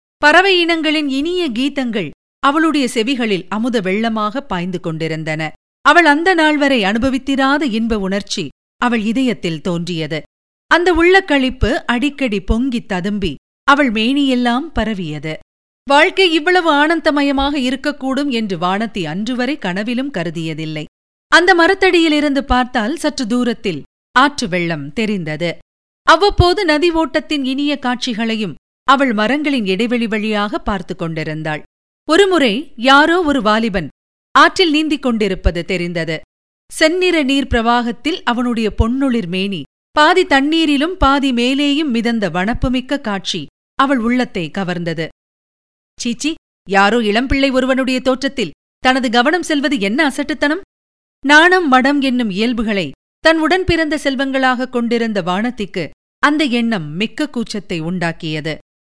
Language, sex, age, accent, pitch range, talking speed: Tamil, female, 50-69, native, 200-290 Hz, 105 wpm